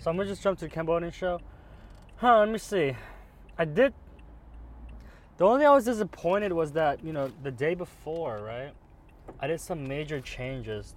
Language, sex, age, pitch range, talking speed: English, male, 20-39, 90-135 Hz, 190 wpm